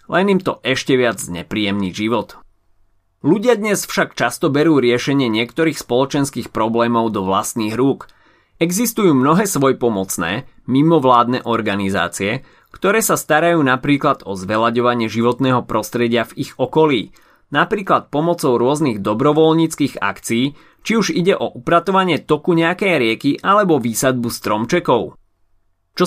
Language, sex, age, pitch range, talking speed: Slovak, male, 30-49, 115-165 Hz, 120 wpm